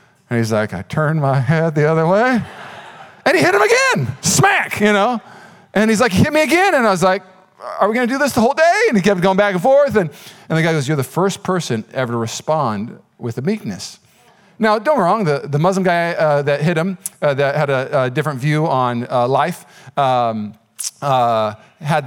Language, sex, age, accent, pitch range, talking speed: English, male, 40-59, American, 130-185 Hz, 230 wpm